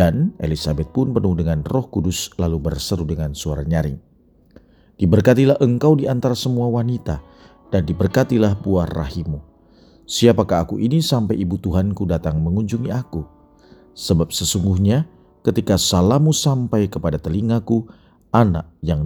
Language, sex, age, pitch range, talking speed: Indonesian, male, 40-59, 80-110 Hz, 125 wpm